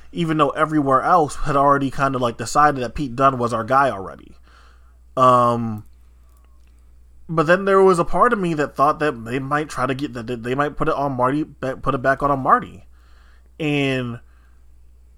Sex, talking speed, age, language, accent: male, 190 wpm, 20-39, English, American